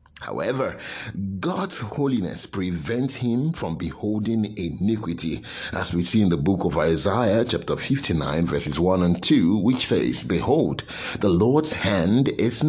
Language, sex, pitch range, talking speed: English, male, 85-120 Hz, 135 wpm